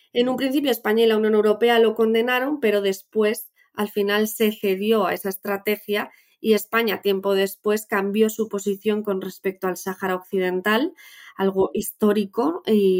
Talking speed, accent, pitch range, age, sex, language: 155 wpm, Spanish, 200-230 Hz, 20-39, female, Spanish